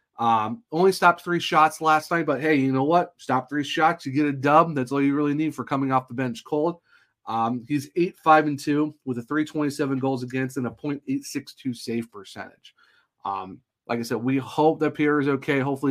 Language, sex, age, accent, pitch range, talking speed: English, male, 30-49, American, 120-145 Hz, 220 wpm